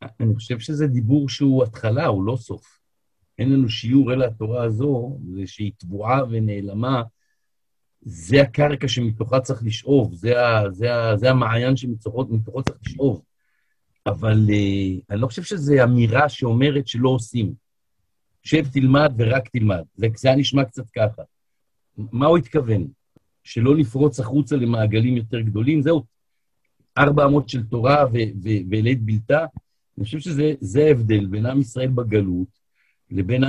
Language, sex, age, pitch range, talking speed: Hebrew, male, 50-69, 110-140 Hz, 145 wpm